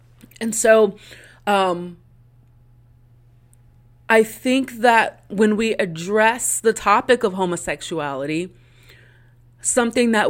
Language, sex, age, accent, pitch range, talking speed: English, female, 30-49, American, 185-245 Hz, 85 wpm